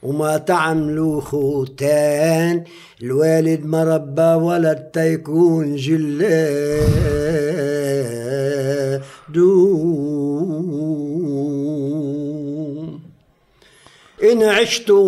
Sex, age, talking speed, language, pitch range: male, 60-79, 40 wpm, Arabic, 150-175 Hz